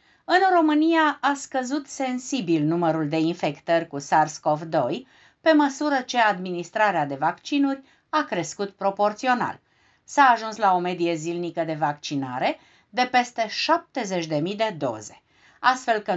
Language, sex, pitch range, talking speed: Romanian, female, 170-275 Hz, 125 wpm